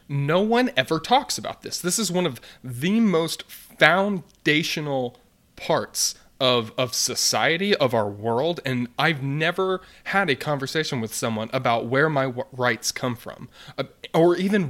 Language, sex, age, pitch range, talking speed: English, male, 30-49, 120-150 Hz, 145 wpm